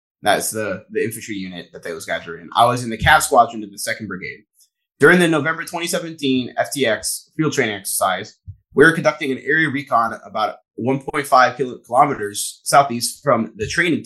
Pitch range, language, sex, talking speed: 110-145 Hz, English, male, 175 wpm